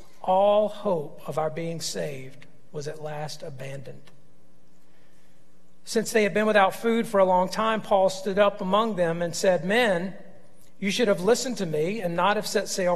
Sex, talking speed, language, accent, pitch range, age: male, 180 wpm, English, American, 165-200 Hz, 50-69